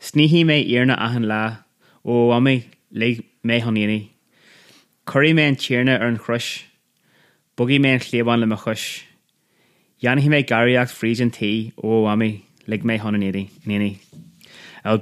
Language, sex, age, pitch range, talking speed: English, male, 20-39, 110-125 Hz, 120 wpm